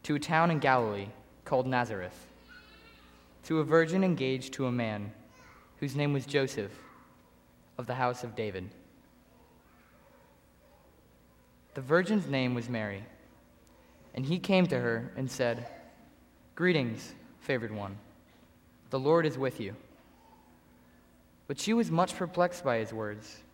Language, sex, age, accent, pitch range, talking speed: English, male, 20-39, American, 105-145 Hz, 130 wpm